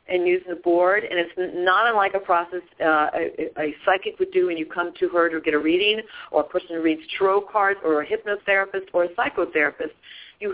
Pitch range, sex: 170-235 Hz, female